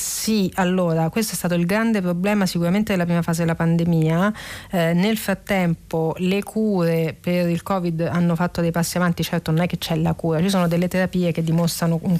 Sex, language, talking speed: female, Italian, 200 wpm